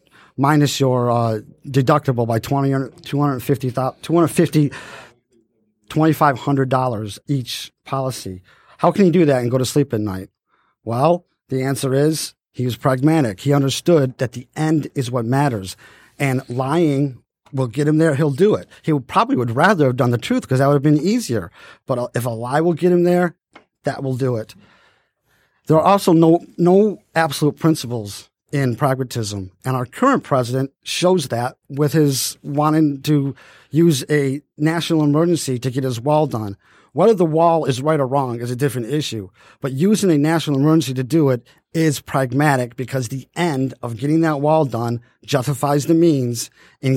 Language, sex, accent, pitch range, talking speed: English, male, American, 125-155 Hz, 170 wpm